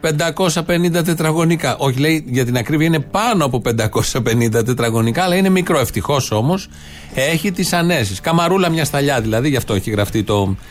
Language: Greek